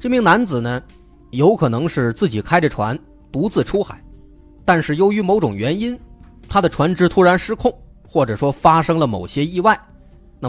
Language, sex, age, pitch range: Chinese, male, 20-39, 115-170 Hz